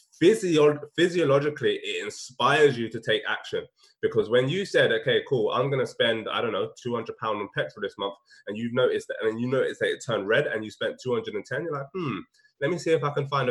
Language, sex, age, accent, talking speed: English, male, 20-39, British, 225 wpm